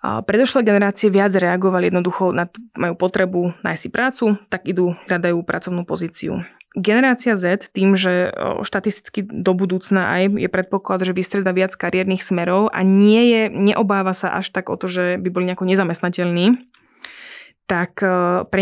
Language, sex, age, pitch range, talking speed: Slovak, female, 20-39, 175-200 Hz, 150 wpm